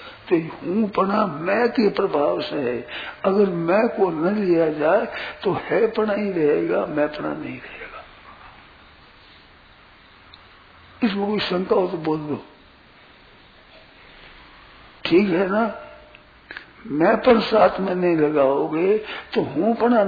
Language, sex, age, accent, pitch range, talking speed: Hindi, male, 60-79, native, 165-220 Hz, 125 wpm